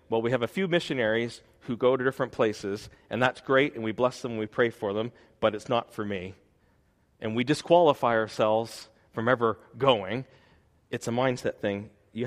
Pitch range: 110-130 Hz